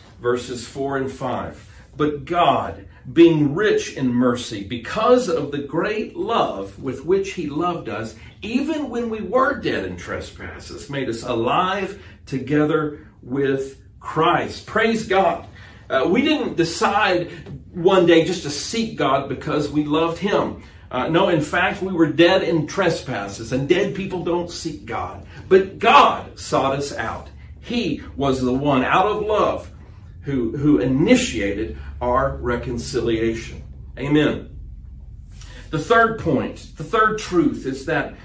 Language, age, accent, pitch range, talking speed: English, 50-69, American, 110-175 Hz, 140 wpm